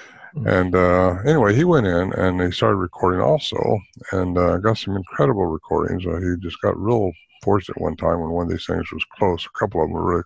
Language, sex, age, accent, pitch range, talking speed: English, male, 60-79, American, 85-95 Hz, 220 wpm